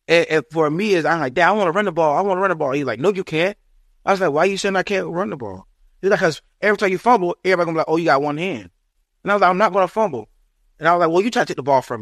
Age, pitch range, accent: 20-39, 130-170 Hz, American